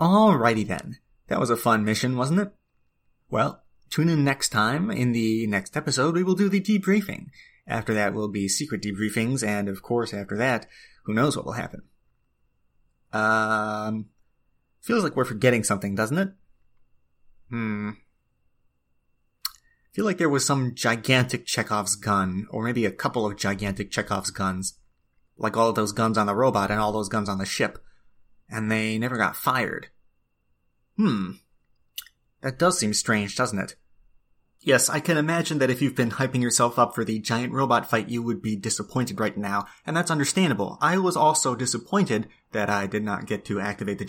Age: 30-49